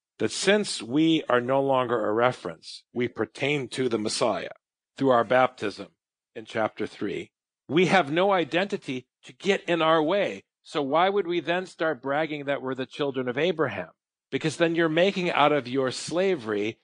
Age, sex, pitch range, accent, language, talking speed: 40-59, male, 130-180 Hz, American, English, 175 wpm